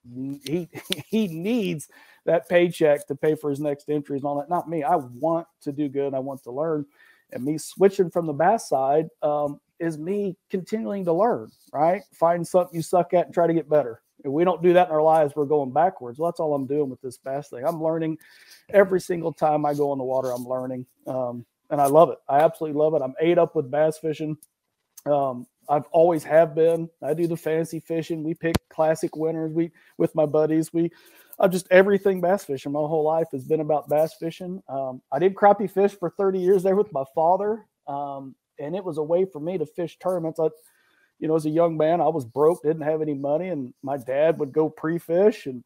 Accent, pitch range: American, 145-175 Hz